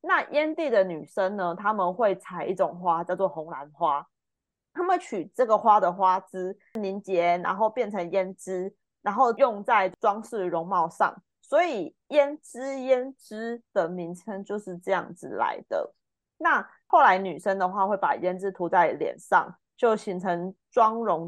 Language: Chinese